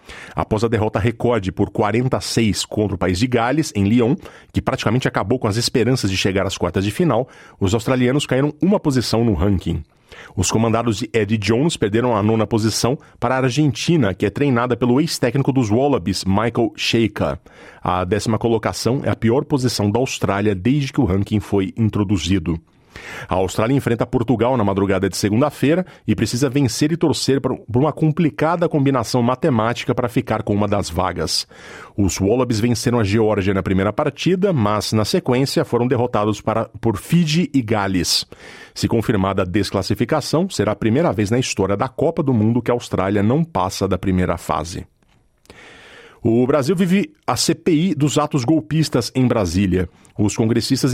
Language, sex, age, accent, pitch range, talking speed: Portuguese, male, 40-59, Brazilian, 105-135 Hz, 170 wpm